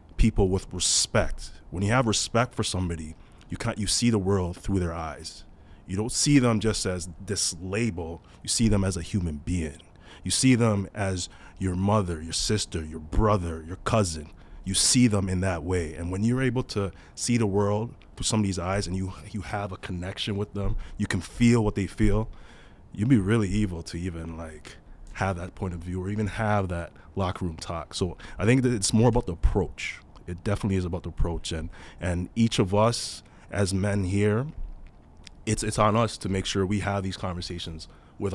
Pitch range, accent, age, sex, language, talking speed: 85-110 Hz, American, 30-49, male, English, 205 wpm